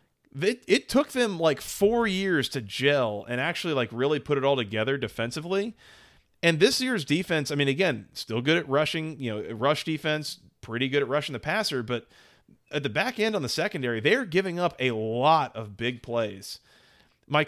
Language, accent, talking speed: English, American, 190 wpm